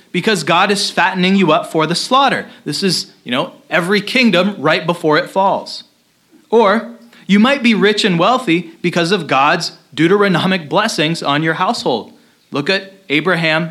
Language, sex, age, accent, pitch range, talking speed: English, male, 30-49, American, 175-225 Hz, 160 wpm